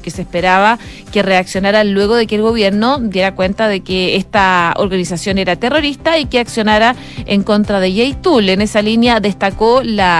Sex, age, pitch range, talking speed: female, 30-49, 200-235 Hz, 180 wpm